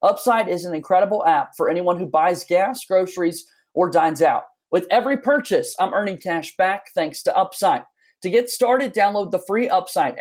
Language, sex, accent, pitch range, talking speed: English, male, American, 180-240 Hz, 180 wpm